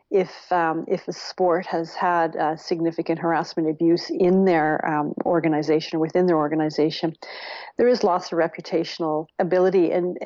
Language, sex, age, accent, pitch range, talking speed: English, female, 50-69, American, 165-195 Hz, 150 wpm